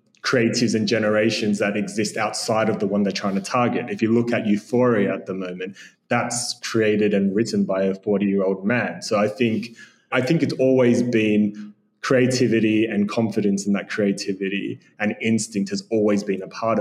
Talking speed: 185 wpm